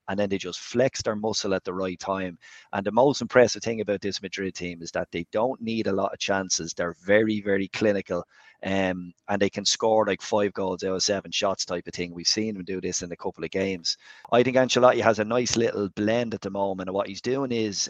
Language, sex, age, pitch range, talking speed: English, male, 30-49, 95-110 Hz, 250 wpm